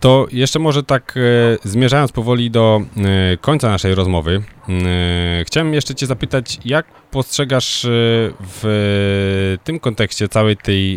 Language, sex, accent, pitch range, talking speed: Polish, male, native, 90-110 Hz, 115 wpm